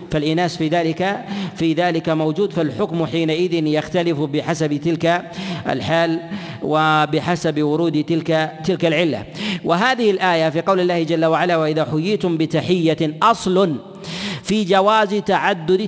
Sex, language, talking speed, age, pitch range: male, Arabic, 115 wpm, 40-59, 160-190 Hz